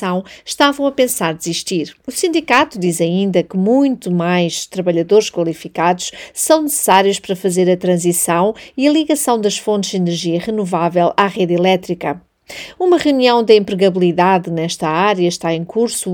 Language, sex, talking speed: Portuguese, female, 145 wpm